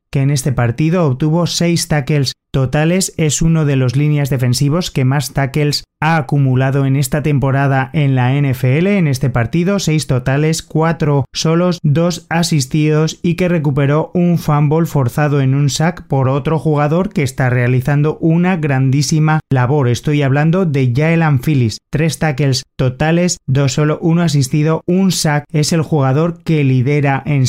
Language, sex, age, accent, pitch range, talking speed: Spanish, male, 30-49, Spanish, 135-160 Hz, 155 wpm